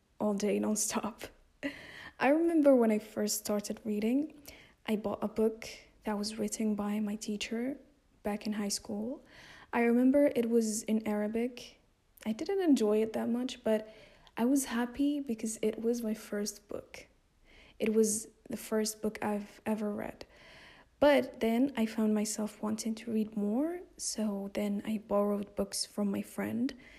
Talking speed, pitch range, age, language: 160 wpm, 210-240 Hz, 20-39, English